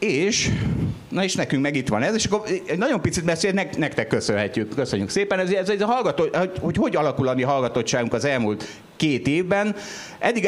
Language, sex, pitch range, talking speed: Hungarian, male, 115-165 Hz, 185 wpm